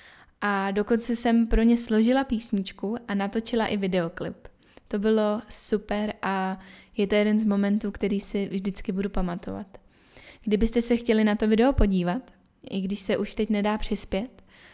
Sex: female